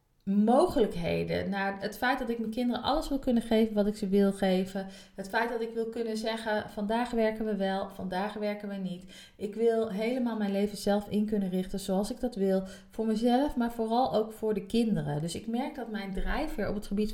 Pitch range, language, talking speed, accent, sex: 195-230 Hz, Dutch, 220 wpm, Dutch, female